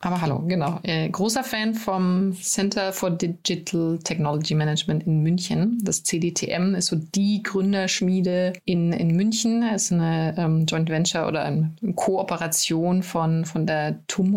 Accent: German